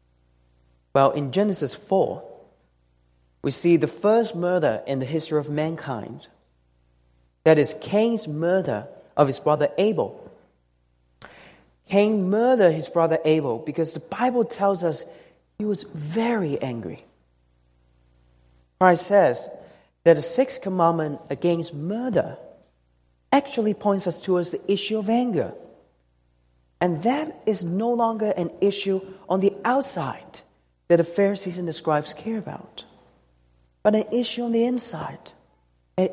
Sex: male